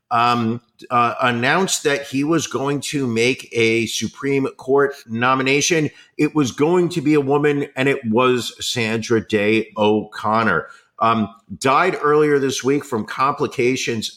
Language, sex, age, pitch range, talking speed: English, male, 50-69, 115-140 Hz, 135 wpm